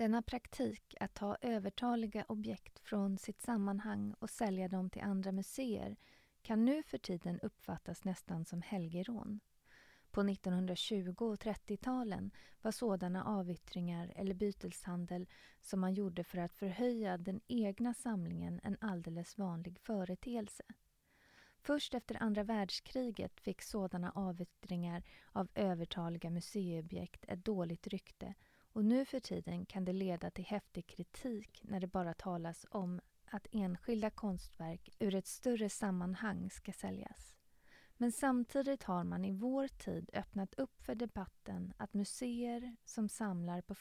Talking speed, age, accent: 135 wpm, 30-49, native